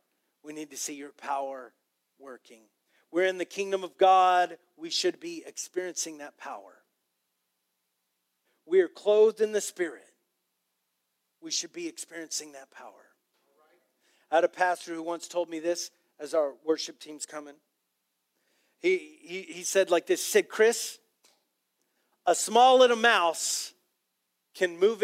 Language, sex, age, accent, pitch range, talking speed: English, male, 40-59, American, 165-265 Hz, 140 wpm